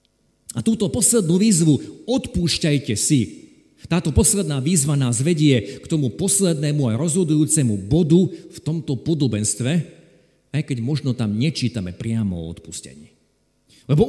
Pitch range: 115-170 Hz